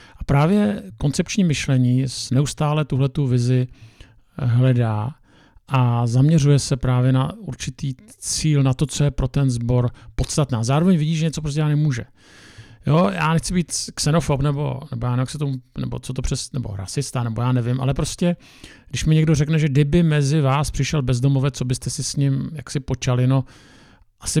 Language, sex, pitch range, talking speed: Czech, male, 125-145 Hz, 170 wpm